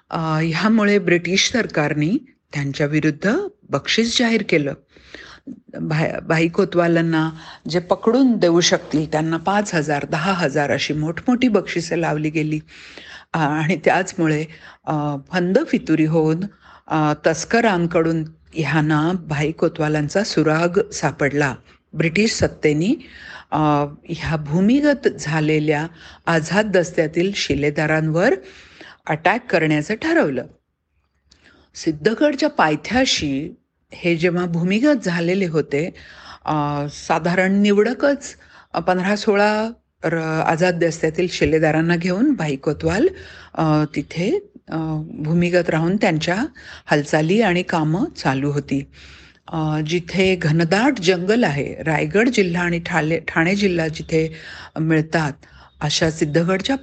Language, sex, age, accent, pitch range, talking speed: Marathi, female, 50-69, native, 155-190 Hz, 90 wpm